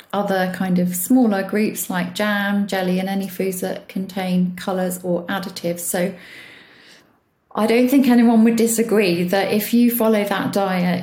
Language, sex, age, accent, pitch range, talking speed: English, female, 30-49, British, 180-210 Hz, 160 wpm